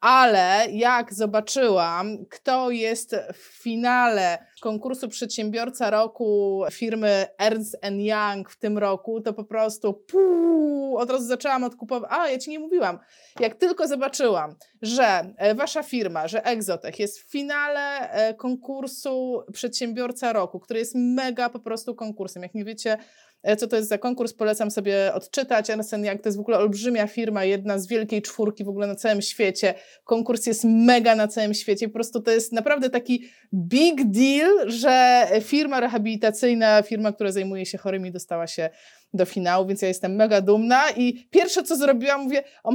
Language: Polish